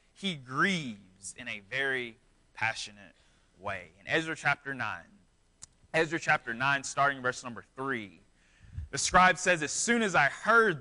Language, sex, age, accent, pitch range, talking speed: English, male, 20-39, American, 165-220 Hz, 145 wpm